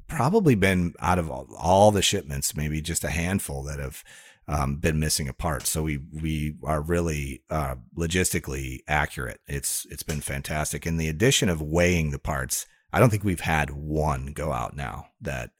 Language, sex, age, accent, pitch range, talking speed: English, male, 30-49, American, 75-95 Hz, 185 wpm